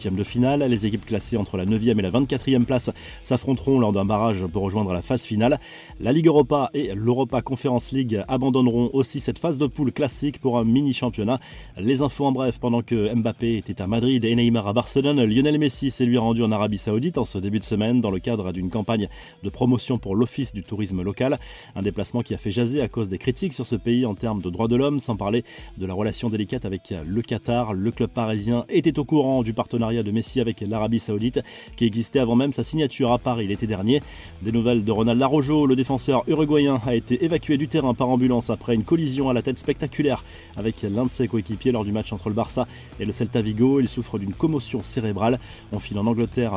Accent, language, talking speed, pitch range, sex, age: French, French, 225 wpm, 110-130 Hz, male, 30-49